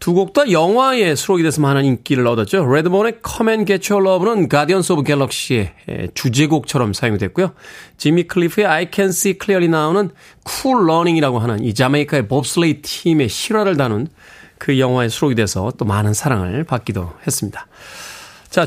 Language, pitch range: Korean, 135-200 Hz